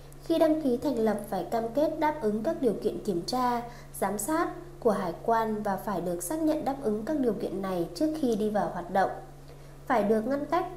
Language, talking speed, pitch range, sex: Vietnamese, 230 wpm, 200-255 Hz, female